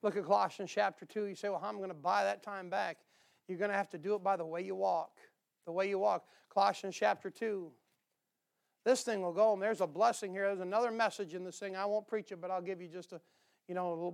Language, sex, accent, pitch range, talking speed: English, male, American, 200-250 Hz, 275 wpm